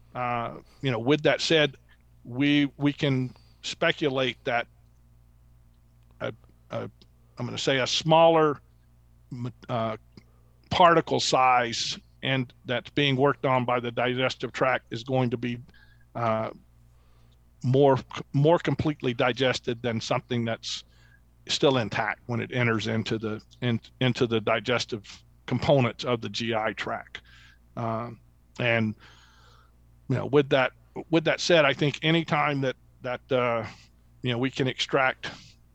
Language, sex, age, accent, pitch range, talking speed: English, male, 50-69, American, 110-140 Hz, 135 wpm